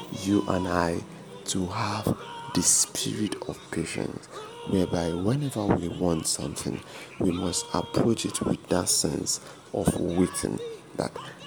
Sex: male